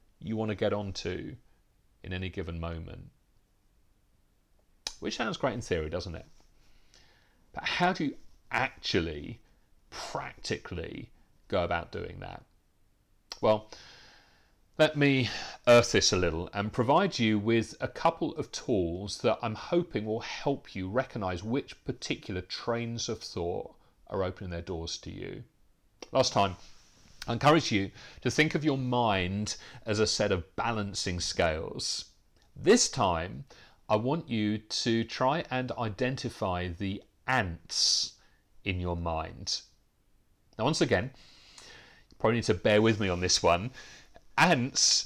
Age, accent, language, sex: 40-59, British, English, male